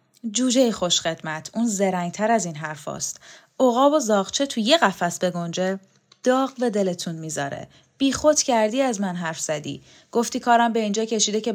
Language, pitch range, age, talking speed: Persian, 190-265 Hz, 10-29, 165 wpm